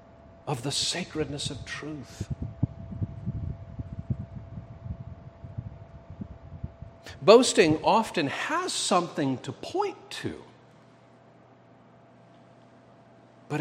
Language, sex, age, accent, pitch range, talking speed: English, male, 50-69, American, 135-225 Hz, 55 wpm